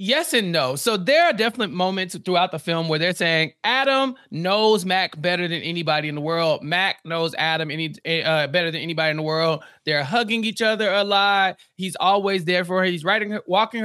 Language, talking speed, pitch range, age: English, 210 wpm, 160-215 Hz, 20-39